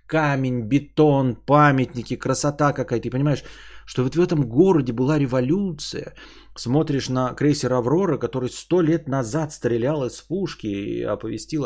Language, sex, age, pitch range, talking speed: Bulgarian, male, 20-39, 110-145 Hz, 140 wpm